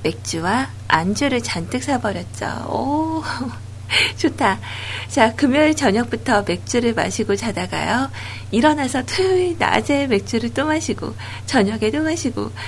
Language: Korean